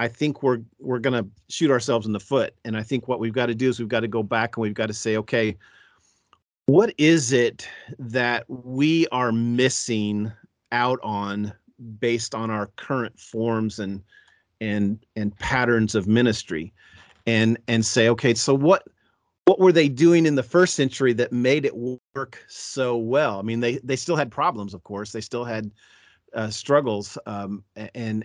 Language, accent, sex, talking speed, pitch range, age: English, American, male, 185 wpm, 110-130 Hz, 40-59